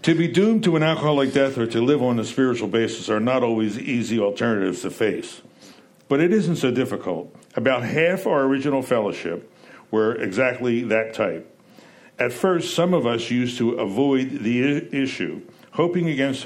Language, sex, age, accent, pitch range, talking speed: English, male, 60-79, American, 115-150 Hz, 170 wpm